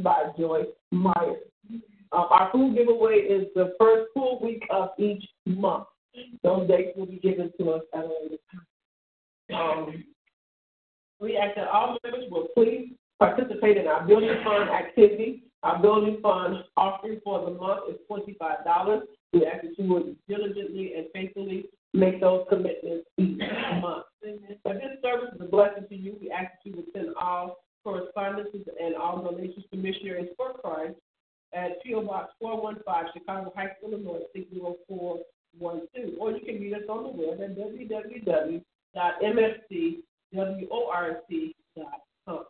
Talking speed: 145 wpm